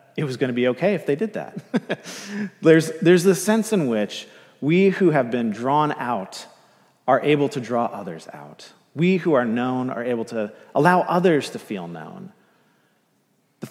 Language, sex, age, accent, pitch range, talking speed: English, male, 30-49, American, 120-155 Hz, 180 wpm